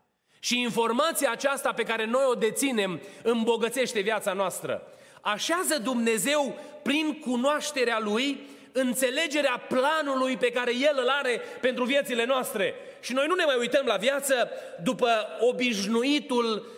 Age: 30-49